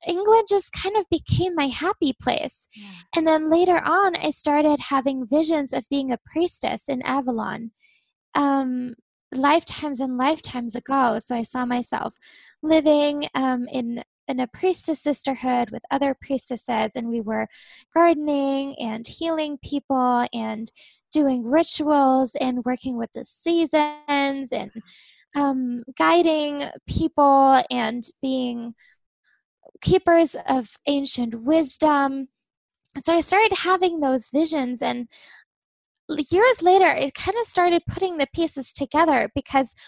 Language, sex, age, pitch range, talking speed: English, female, 10-29, 255-315 Hz, 125 wpm